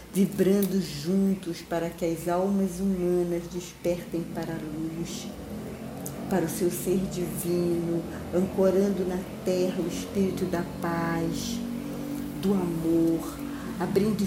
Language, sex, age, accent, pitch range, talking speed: Portuguese, female, 50-69, Brazilian, 165-205 Hz, 110 wpm